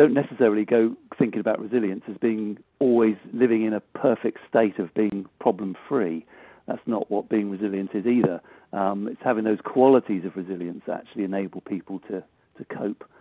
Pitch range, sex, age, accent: 100-120 Hz, male, 50-69, British